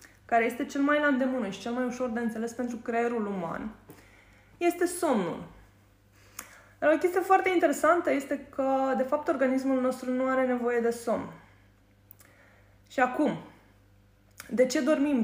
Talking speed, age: 150 wpm, 20-39